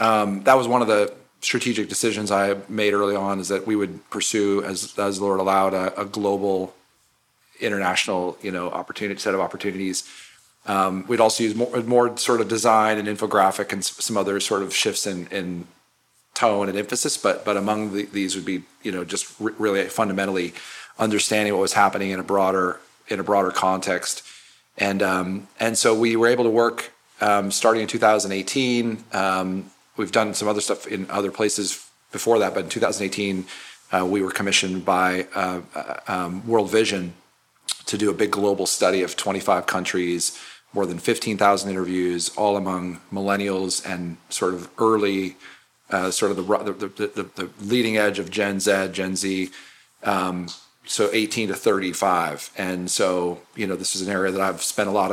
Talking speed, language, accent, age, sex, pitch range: 175 wpm, English, American, 40-59, male, 95-105 Hz